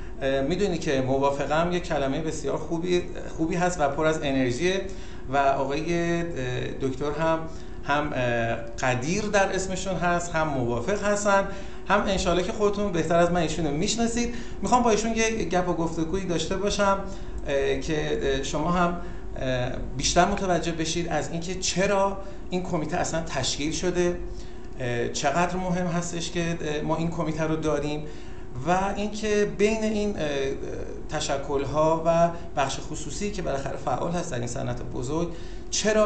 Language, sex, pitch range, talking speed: Persian, male, 135-180 Hz, 140 wpm